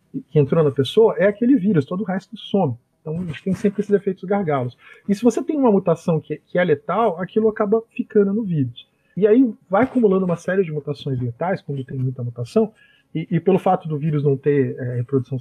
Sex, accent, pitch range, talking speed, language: male, Brazilian, 150-215 Hz, 220 wpm, English